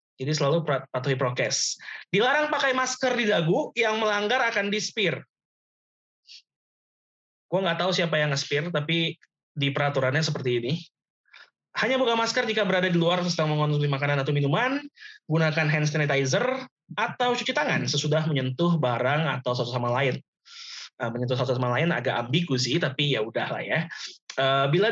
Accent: native